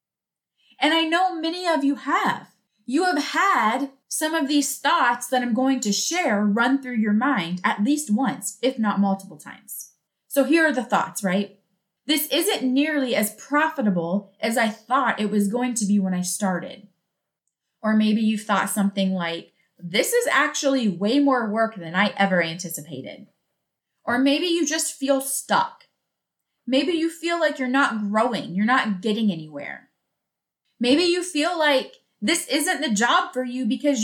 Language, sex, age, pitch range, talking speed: English, female, 20-39, 205-295 Hz, 170 wpm